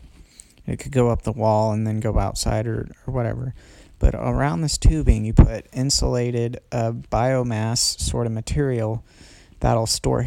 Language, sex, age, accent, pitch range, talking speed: English, male, 30-49, American, 110-130 Hz, 160 wpm